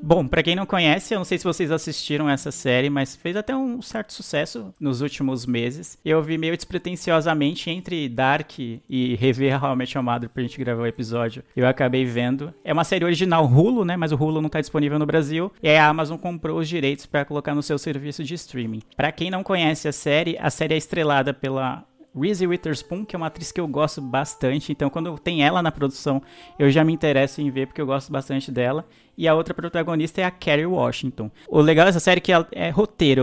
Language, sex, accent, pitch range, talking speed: Portuguese, male, Brazilian, 140-175 Hz, 220 wpm